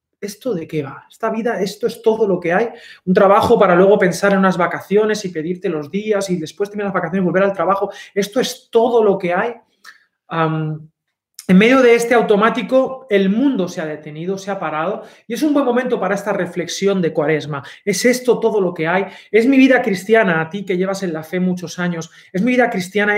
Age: 30-49